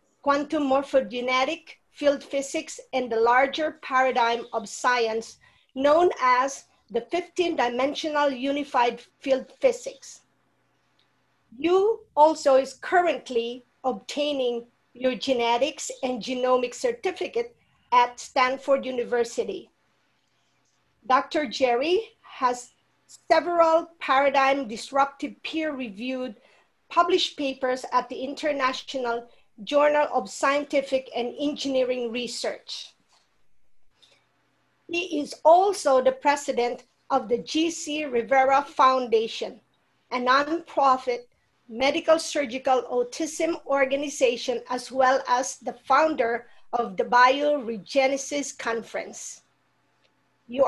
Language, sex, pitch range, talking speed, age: English, female, 245-305 Hz, 90 wpm, 40-59